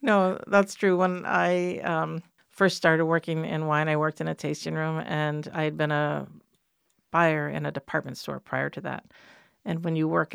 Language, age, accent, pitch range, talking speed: English, 50-69, American, 150-185 Hz, 195 wpm